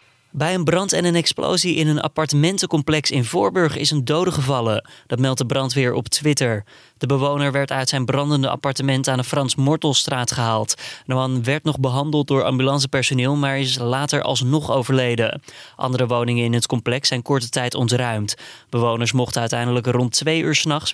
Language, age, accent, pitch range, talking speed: Dutch, 20-39, Dutch, 125-155 Hz, 170 wpm